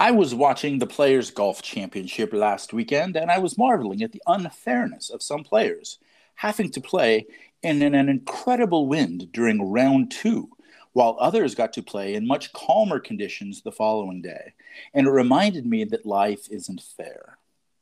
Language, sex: English, male